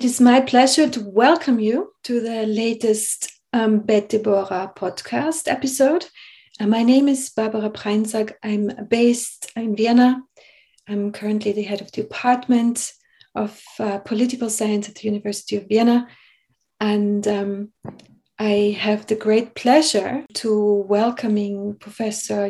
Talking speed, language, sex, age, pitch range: 135 wpm, German, female, 30-49, 210-245 Hz